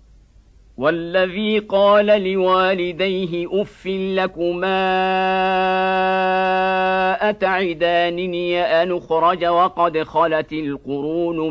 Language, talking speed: Indonesian, 55 wpm